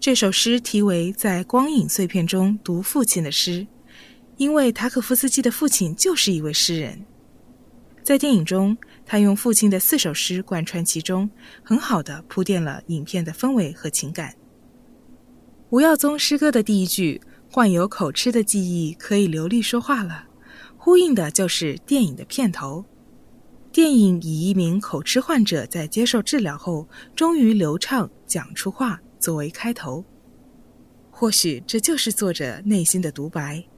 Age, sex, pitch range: 20-39, female, 175-245 Hz